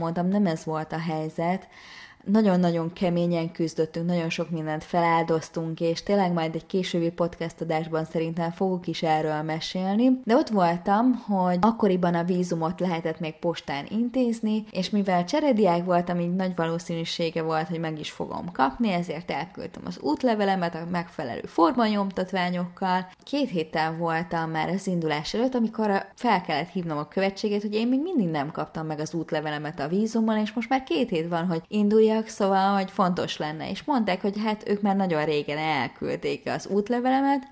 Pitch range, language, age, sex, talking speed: 165-205 Hz, Hungarian, 20-39, female, 165 wpm